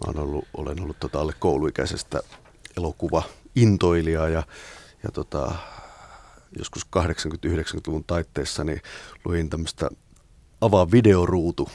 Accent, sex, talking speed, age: native, male, 95 wpm, 30-49